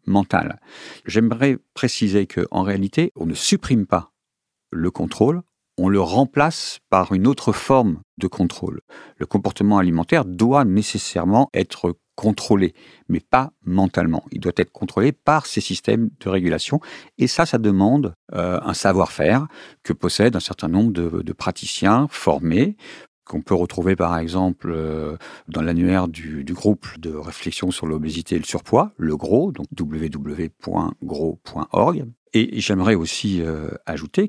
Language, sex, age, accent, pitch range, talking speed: French, male, 50-69, French, 85-110 Hz, 140 wpm